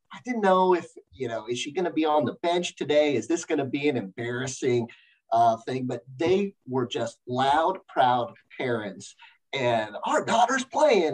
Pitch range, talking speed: 145-200 Hz, 190 wpm